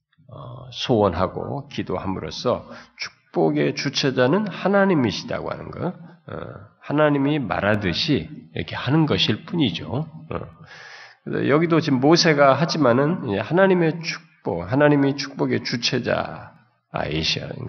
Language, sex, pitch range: Korean, male, 110-150 Hz